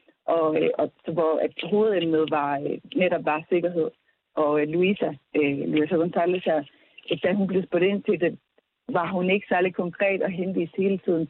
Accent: native